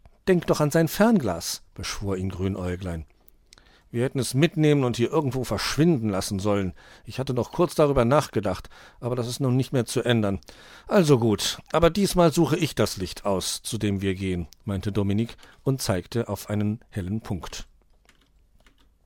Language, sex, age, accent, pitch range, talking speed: German, male, 50-69, German, 100-150 Hz, 165 wpm